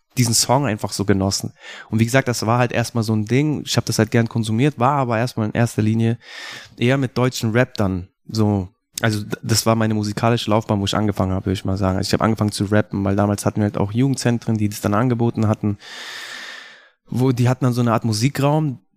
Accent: German